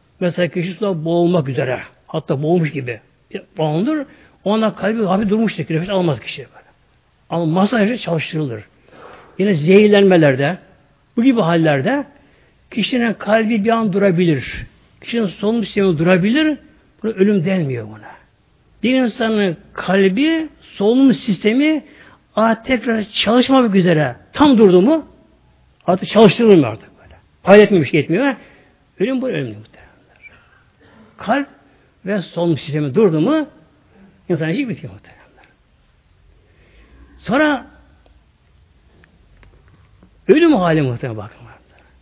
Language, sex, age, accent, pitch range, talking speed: Turkish, male, 60-79, native, 135-210 Hz, 110 wpm